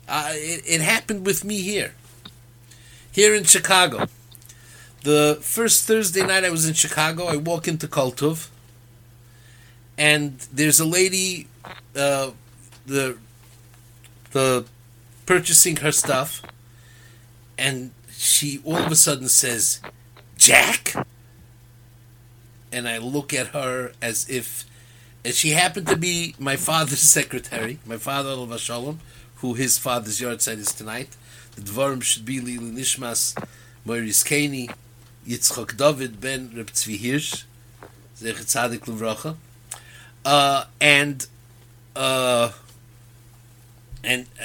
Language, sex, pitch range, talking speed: English, male, 120-155 Hz, 110 wpm